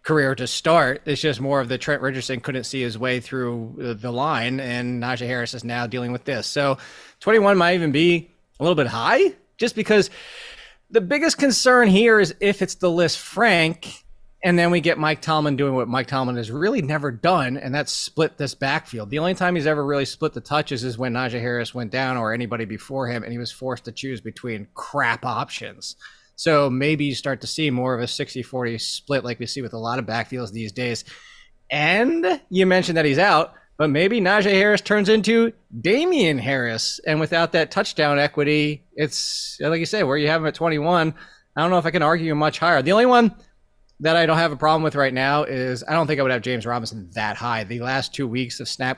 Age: 20-39